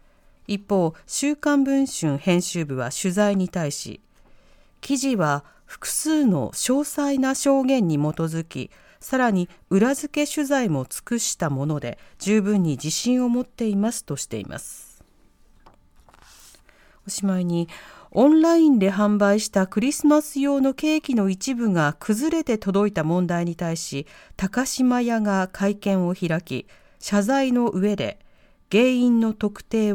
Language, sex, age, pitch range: Japanese, female, 40-59, 170-260 Hz